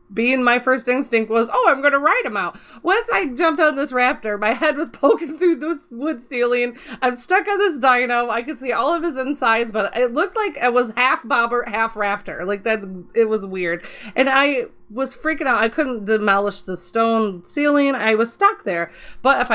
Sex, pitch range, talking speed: female, 200-260 Hz, 215 wpm